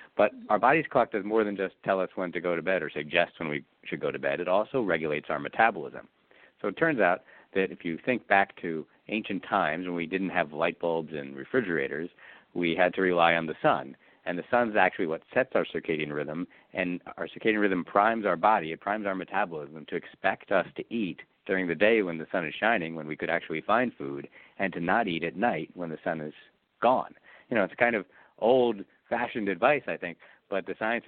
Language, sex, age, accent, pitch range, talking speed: English, male, 50-69, American, 85-100 Hz, 225 wpm